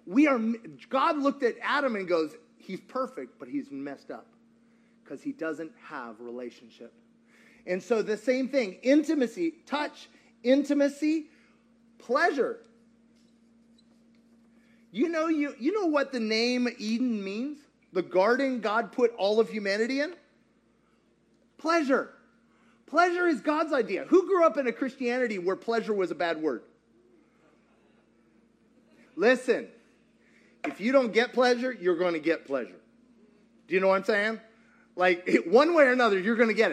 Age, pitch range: 30-49, 215-275 Hz